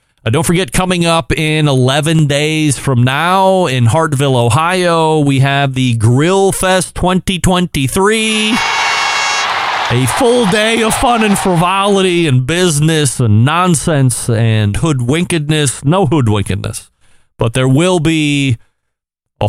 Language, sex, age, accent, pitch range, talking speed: English, male, 30-49, American, 115-155 Hz, 120 wpm